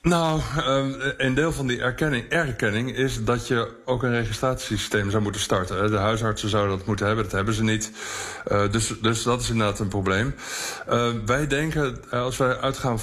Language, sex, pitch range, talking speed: Dutch, male, 105-125 Hz, 175 wpm